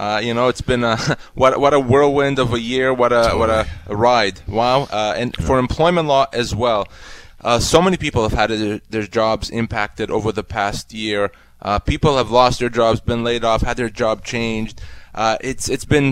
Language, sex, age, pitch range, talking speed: English, male, 20-39, 115-135 Hz, 210 wpm